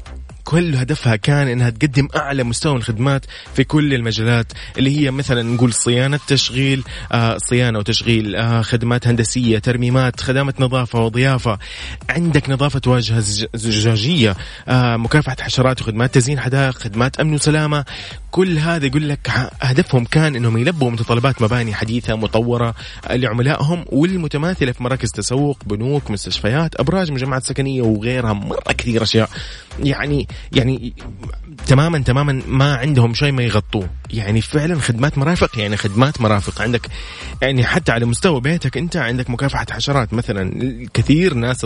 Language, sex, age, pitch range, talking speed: Arabic, male, 20-39, 115-140 Hz, 135 wpm